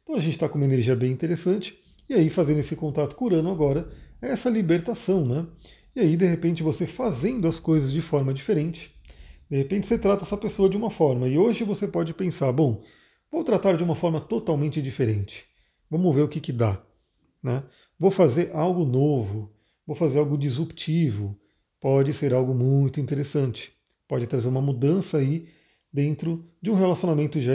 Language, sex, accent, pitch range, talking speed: Portuguese, male, Brazilian, 135-175 Hz, 180 wpm